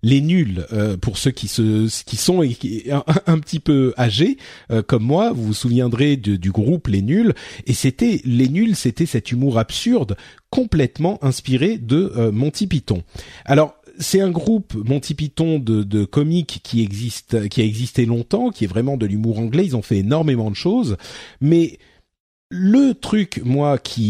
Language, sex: French, male